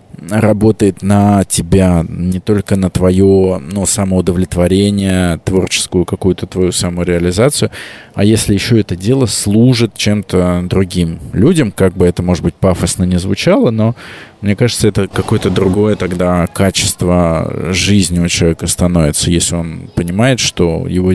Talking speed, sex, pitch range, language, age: 130 wpm, male, 90-105 Hz, Russian, 20-39